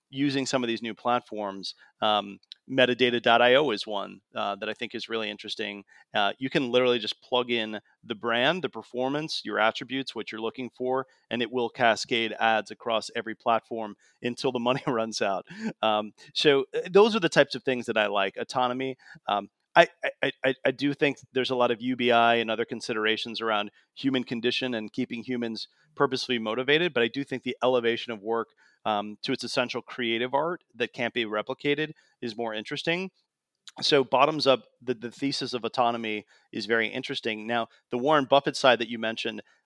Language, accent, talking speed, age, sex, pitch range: English, American, 185 wpm, 30-49, male, 110-135 Hz